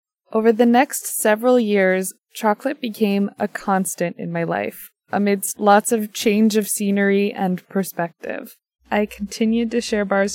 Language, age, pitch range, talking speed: English, 20-39, 185-220 Hz, 145 wpm